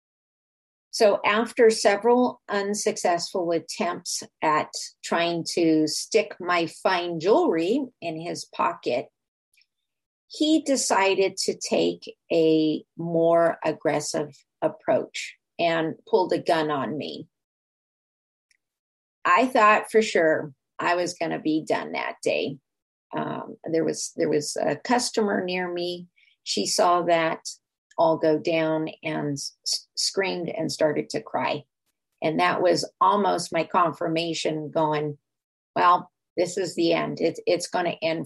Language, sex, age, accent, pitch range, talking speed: English, female, 50-69, American, 155-210 Hz, 120 wpm